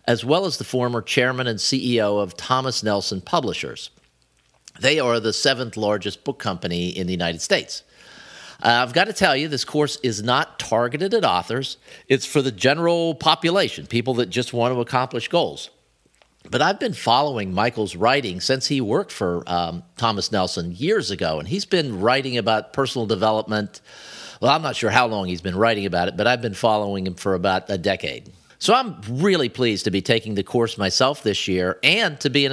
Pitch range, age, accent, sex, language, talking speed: 105-140 Hz, 50-69, American, male, English, 195 wpm